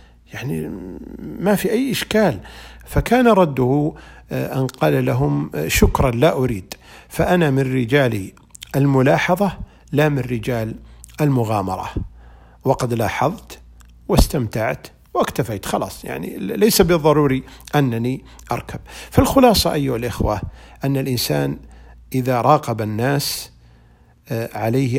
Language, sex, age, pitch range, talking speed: Arabic, male, 50-69, 105-135 Hz, 95 wpm